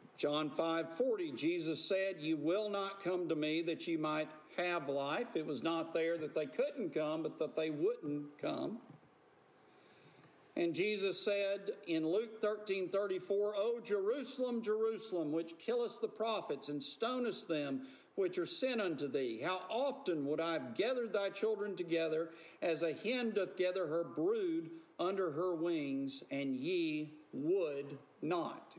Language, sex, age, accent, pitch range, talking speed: English, male, 50-69, American, 160-235 Hz, 155 wpm